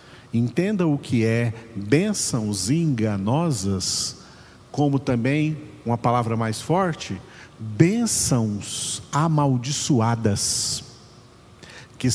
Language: Portuguese